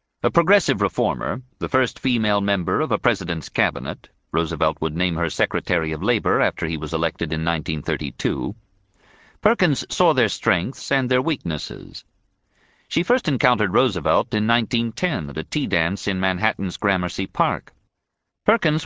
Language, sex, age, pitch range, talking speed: English, male, 50-69, 90-120 Hz, 145 wpm